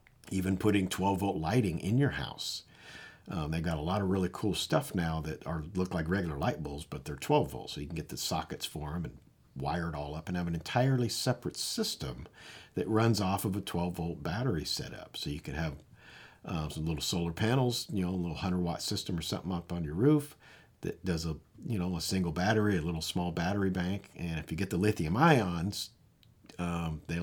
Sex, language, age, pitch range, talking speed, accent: male, English, 50-69, 85-110 Hz, 225 wpm, American